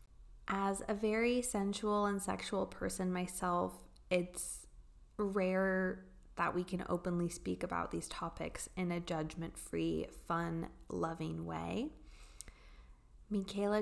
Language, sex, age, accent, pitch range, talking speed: English, female, 20-39, American, 170-200 Hz, 110 wpm